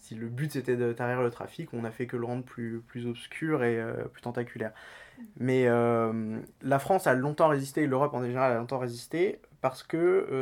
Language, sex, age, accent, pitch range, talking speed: English, male, 20-39, French, 115-135 Hz, 215 wpm